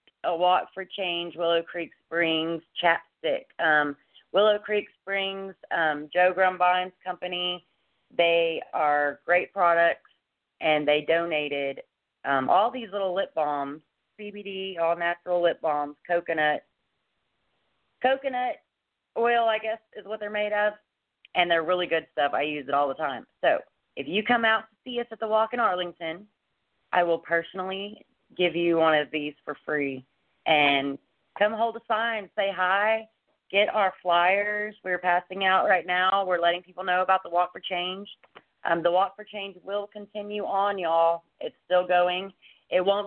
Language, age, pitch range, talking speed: English, 30-49, 165-205 Hz, 160 wpm